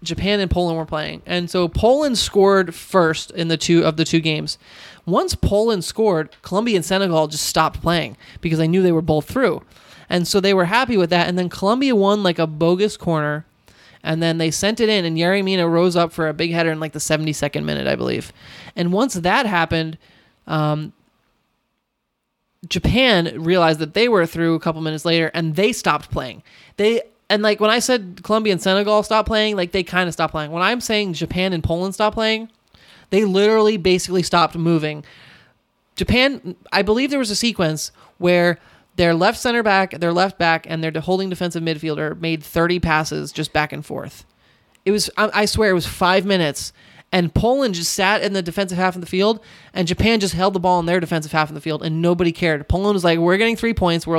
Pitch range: 160-200 Hz